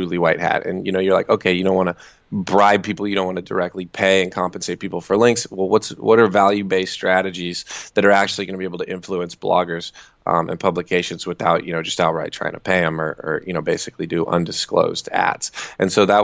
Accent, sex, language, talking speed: American, male, English, 235 wpm